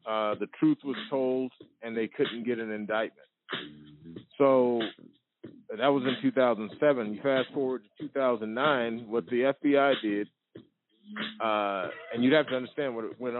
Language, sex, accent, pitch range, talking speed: English, male, American, 115-140 Hz, 170 wpm